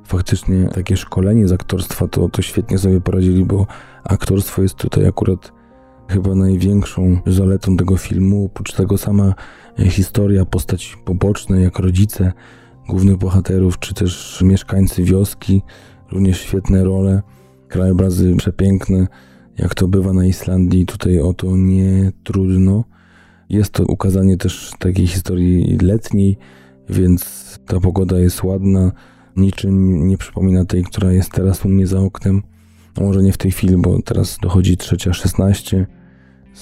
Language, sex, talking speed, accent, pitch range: Polish, male, 135 wpm, native, 90-95 Hz